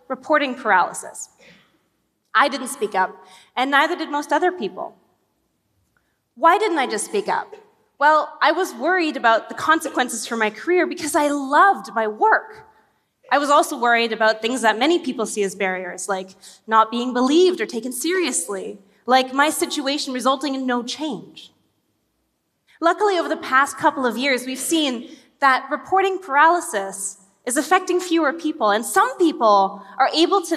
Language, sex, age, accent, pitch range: Korean, female, 20-39, American, 230-335 Hz